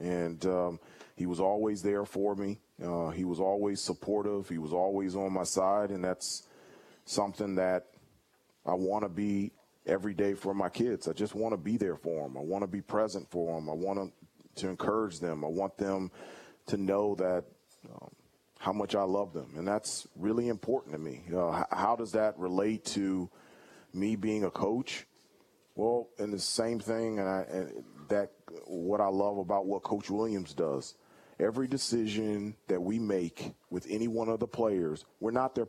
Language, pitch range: English, 95-110 Hz